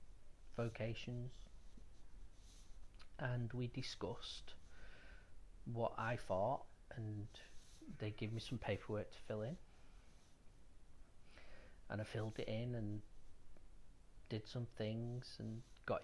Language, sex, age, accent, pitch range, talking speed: English, male, 40-59, British, 90-115 Hz, 100 wpm